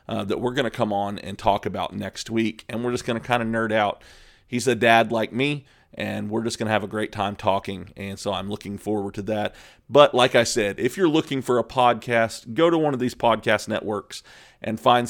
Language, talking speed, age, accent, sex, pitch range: English, 245 wpm, 30-49, American, male, 105-125 Hz